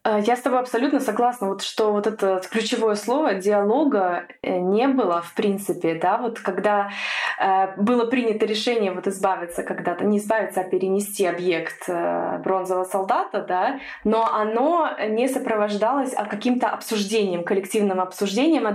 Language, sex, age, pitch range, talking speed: English, female, 20-39, 195-230 Hz, 140 wpm